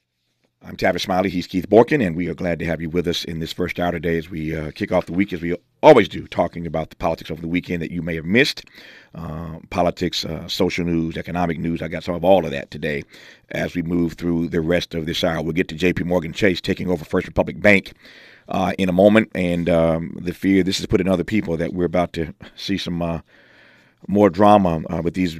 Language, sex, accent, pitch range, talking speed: English, male, American, 85-95 Hz, 245 wpm